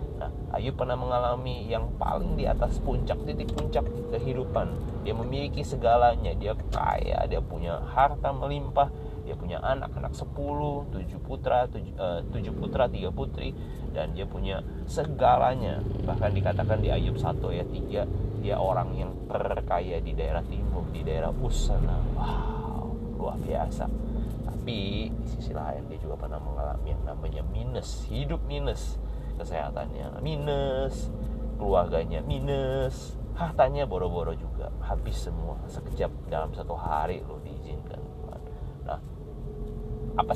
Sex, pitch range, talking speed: male, 75-120 Hz, 130 wpm